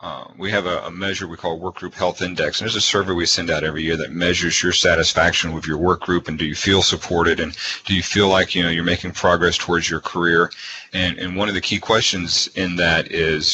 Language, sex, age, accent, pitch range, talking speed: English, male, 40-59, American, 85-95 Hz, 255 wpm